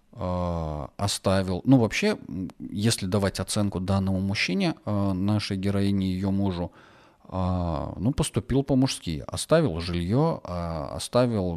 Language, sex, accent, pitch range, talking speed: Russian, male, native, 90-115 Hz, 95 wpm